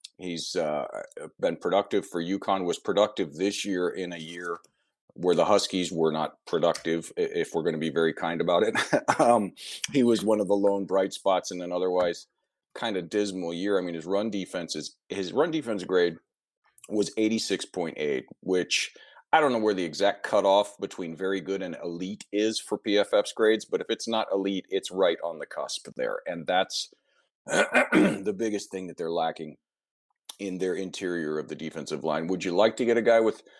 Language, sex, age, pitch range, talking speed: English, male, 40-59, 90-130 Hz, 190 wpm